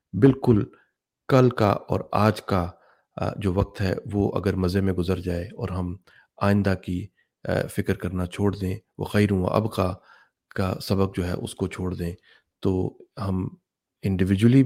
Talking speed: 150 wpm